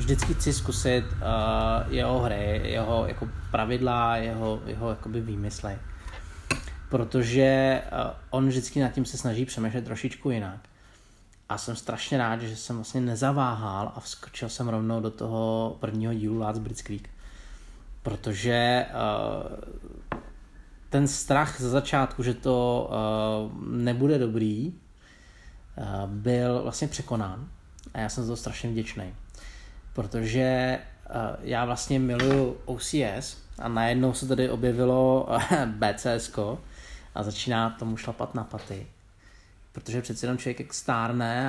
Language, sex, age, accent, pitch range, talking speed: Czech, male, 20-39, native, 110-125 Hz, 125 wpm